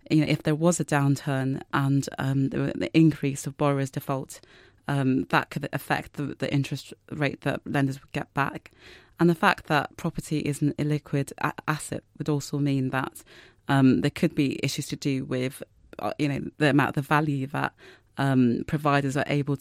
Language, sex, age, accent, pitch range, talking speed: English, female, 20-39, British, 140-155 Hz, 185 wpm